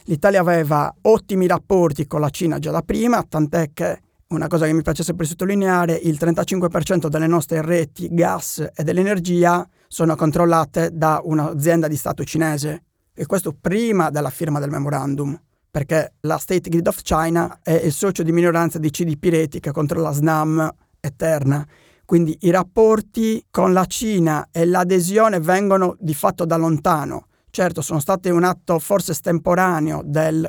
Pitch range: 160-185 Hz